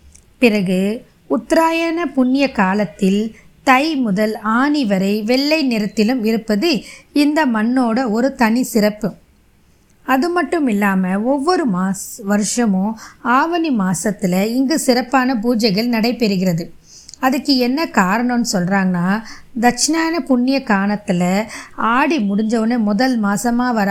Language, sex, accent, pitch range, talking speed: Tamil, female, native, 200-255 Hz, 100 wpm